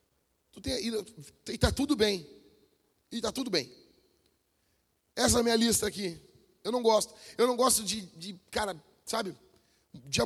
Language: Portuguese